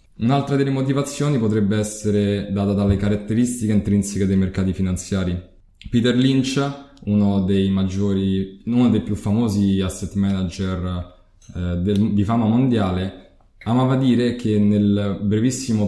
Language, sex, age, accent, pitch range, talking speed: Italian, male, 20-39, native, 95-115 Hz, 125 wpm